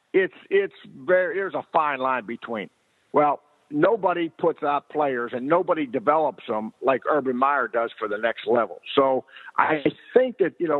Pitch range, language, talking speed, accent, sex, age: 145-200 Hz, English, 170 wpm, American, male, 50-69